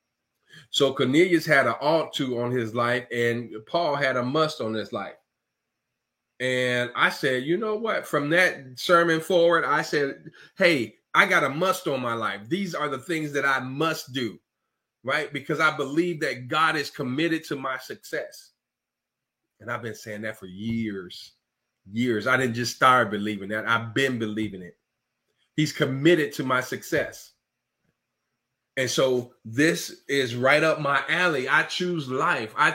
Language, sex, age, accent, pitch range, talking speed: English, male, 30-49, American, 125-165 Hz, 165 wpm